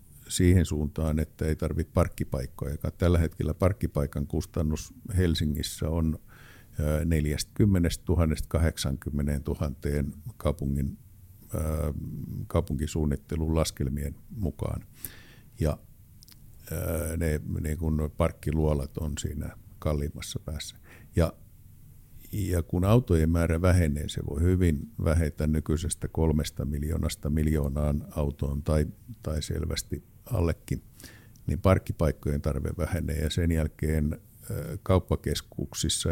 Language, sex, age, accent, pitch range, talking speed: Finnish, male, 50-69, native, 75-95 Hz, 90 wpm